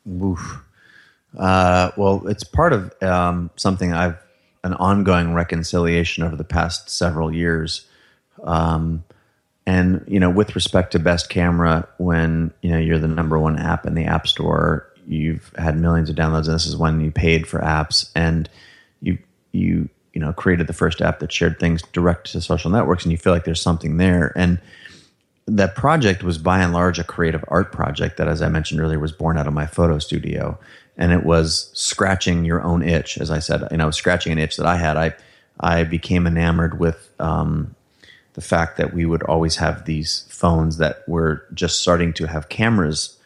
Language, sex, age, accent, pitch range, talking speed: English, male, 30-49, American, 80-90 Hz, 190 wpm